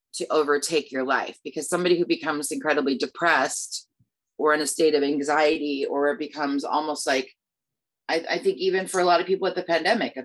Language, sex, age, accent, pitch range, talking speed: English, female, 30-49, American, 145-170 Hz, 200 wpm